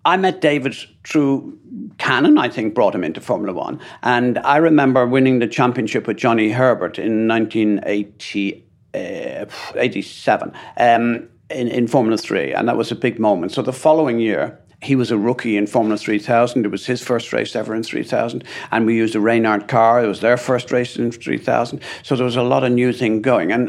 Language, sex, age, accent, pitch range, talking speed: English, male, 50-69, British, 110-135 Hz, 195 wpm